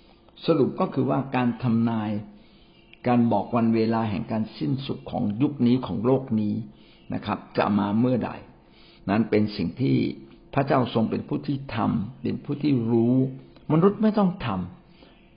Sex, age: male, 60-79